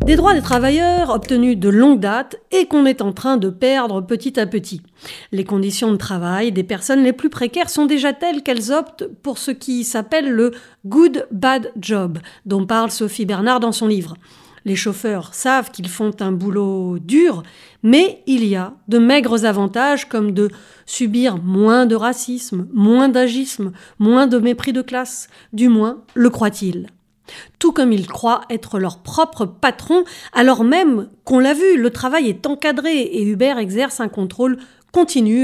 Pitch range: 205-270 Hz